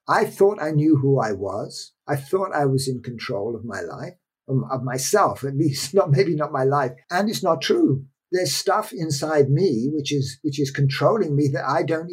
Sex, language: male, English